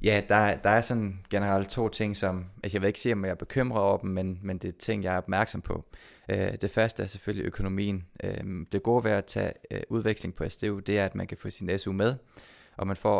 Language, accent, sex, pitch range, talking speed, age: Danish, native, male, 95-105 Hz, 240 wpm, 20-39